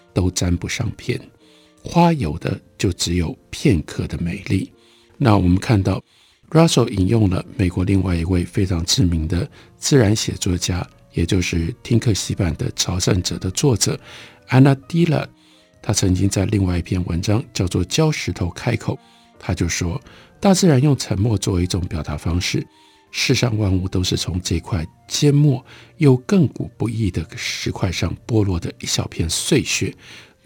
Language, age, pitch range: Chinese, 60-79, 90-120 Hz